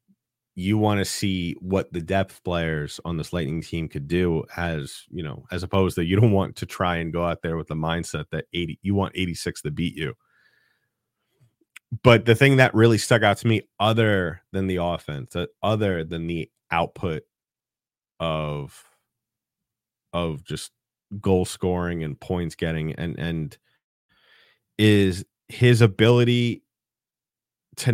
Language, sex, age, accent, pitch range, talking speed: English, male, 30-49, American, 85-110 Hz, 155 wpm